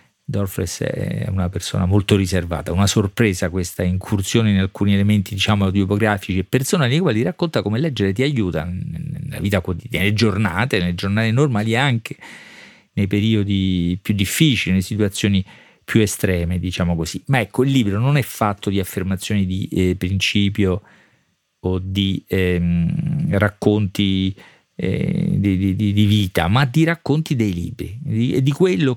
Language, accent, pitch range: Italian, native, 95-125 Hz